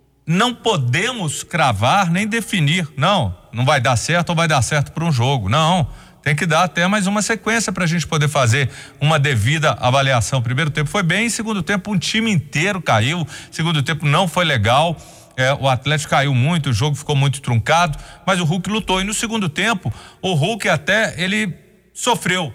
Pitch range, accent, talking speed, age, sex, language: 140-190 Hz, Brazilian, 190 wpm, 40-59, male, Portuguese